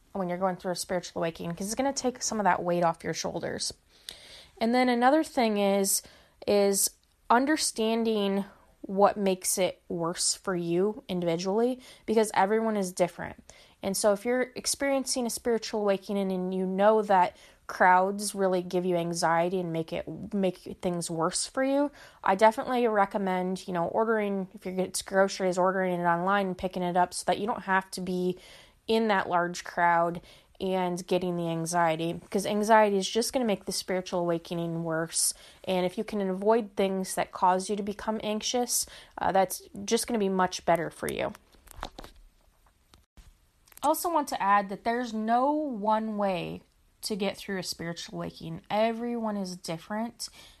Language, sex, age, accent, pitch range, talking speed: English, female, 20-39, American, 180-220 Hz, 170 wpm